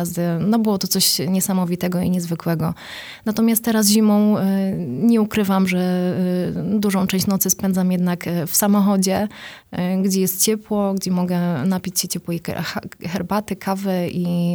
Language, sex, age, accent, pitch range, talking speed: Polish, female, 20-39, native, 175-200 Hz, 130 wpm